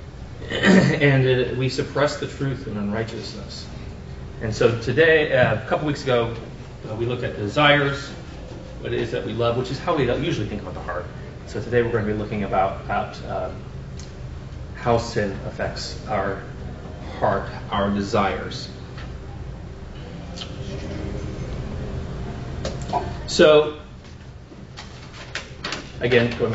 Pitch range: 100-130 Hz